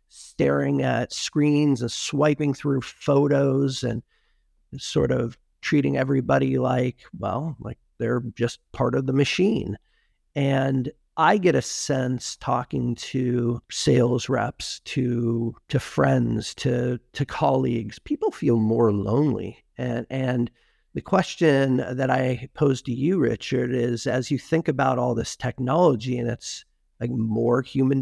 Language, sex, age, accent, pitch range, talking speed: English, male, 50-69, American, 120-145 Hz, 135 wpm